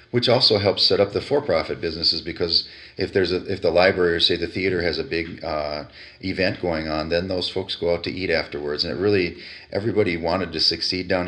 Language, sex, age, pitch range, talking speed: English, male, 40-59, 80-95 Hz, 225 wpm